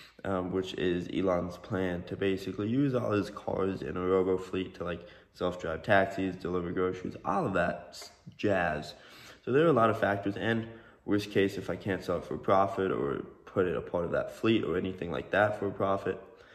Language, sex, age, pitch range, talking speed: English, male, 20-39, 95-105 Hz, 205 wpm